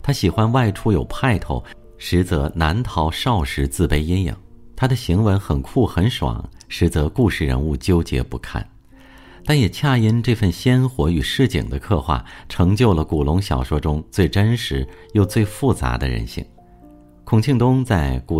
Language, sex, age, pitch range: Chinese, male, 50-69, 75-110 Hz